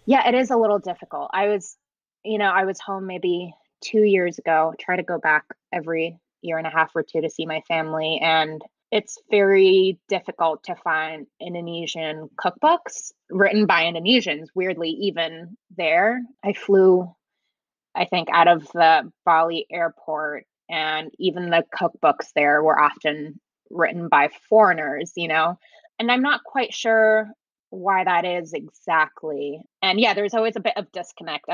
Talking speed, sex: 160 wpm, female